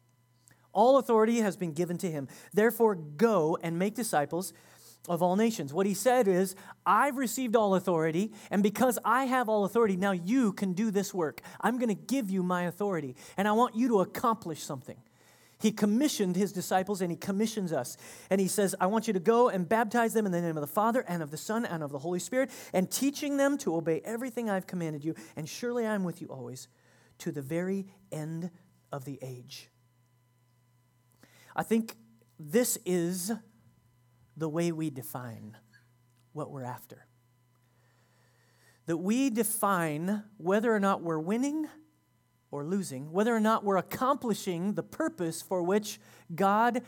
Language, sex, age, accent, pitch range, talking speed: English, male, 40-59, American, 130-215 Hz, 175 wpm